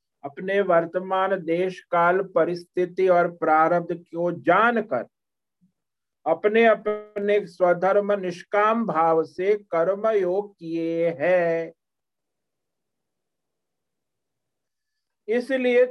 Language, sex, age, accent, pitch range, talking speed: Hindi, male, 50-69, native, 170-205 Hz, 75 wpm